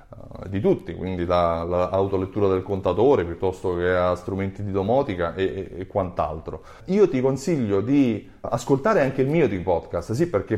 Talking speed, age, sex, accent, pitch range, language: 155 wpm, 30-49, male, native, 100-150 Hz, Italian